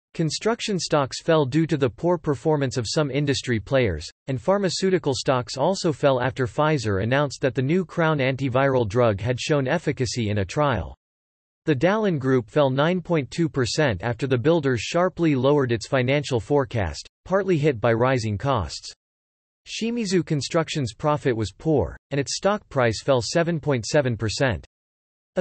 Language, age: English, 40-59